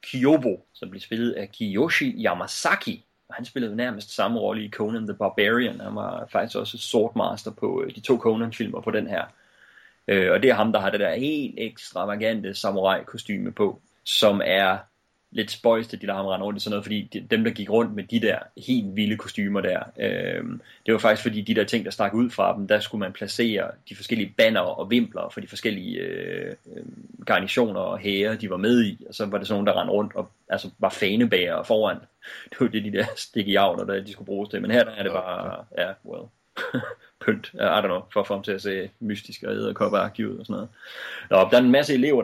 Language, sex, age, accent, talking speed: English, male, 30-49, Danish, 220 wpm